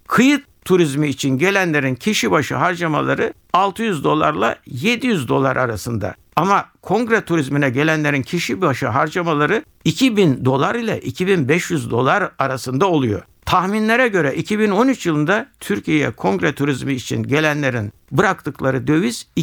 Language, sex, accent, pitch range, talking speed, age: Turkish, male, native, 130-195 Hz, 115 wpm, 60-79